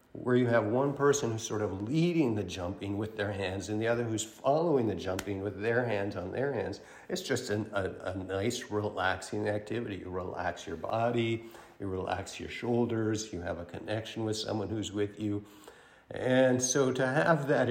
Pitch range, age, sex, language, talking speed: 95-115 Hz, 50-69, male, English, 190 wpm